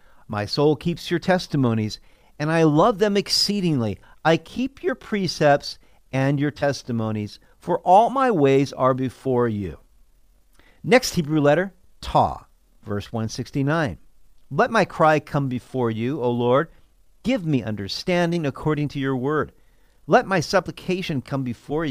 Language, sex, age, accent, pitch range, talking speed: English, male, 50-69, American, 125-175 Hz, 135 wpm